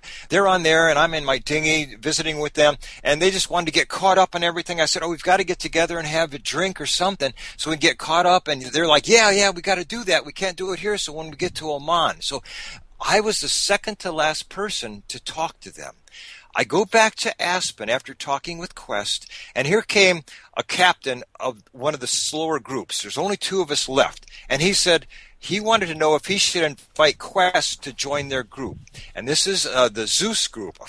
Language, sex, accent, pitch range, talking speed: English, male, American, 140-185 Hz, 240 wpm